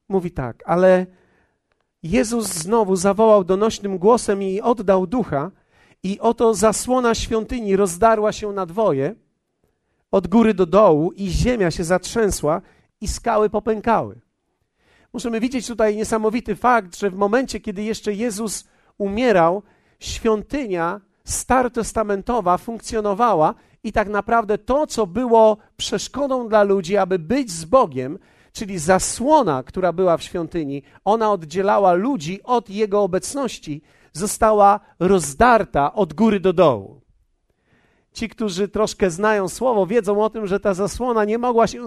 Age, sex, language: 50-69, male, Polish